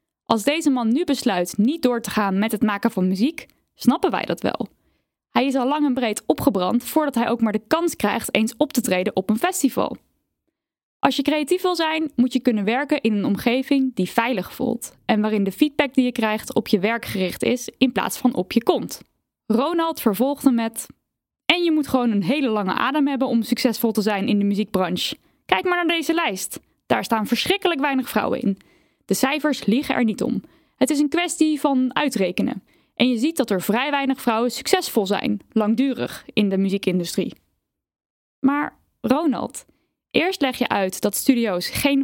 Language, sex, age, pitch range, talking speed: Dutch, female, 10-29, 215-295 Hz, 195 wpm